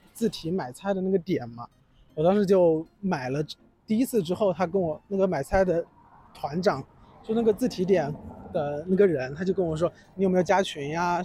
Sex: male